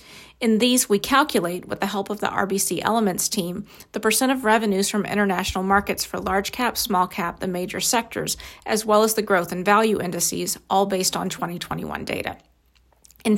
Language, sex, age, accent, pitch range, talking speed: English, female, 40-59, American, 190-220 Hz, 175 wpm